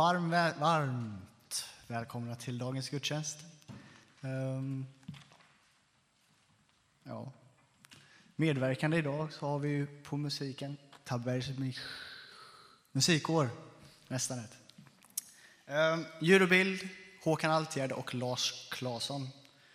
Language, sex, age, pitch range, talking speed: Swedish, male, 20-39, 125-150 Hz, 70 wpm